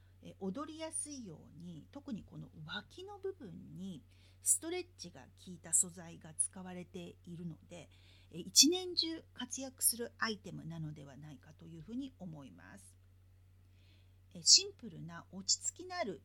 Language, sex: Japanese, female